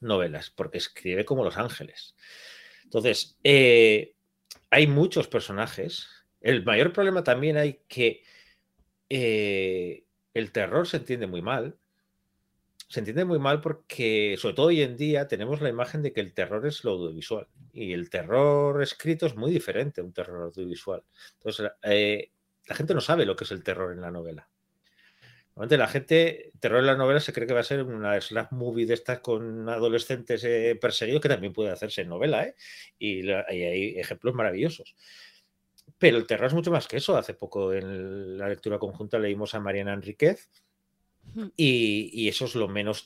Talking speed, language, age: 180 wpm, Spanish, 40-59